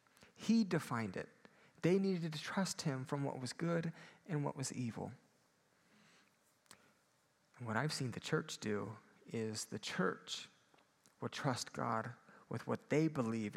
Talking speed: 145 wpm